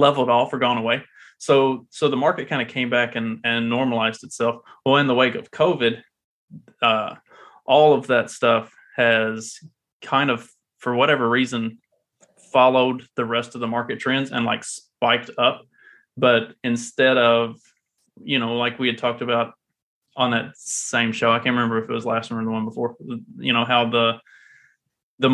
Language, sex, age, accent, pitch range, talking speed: English, male, 20-39, American, 115-130 Hz, 180 wpm